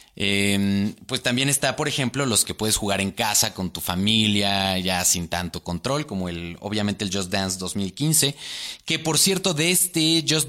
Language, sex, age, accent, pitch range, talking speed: Spanish, male, 30-49, Mexican, 90-120 Hz, 185 wpm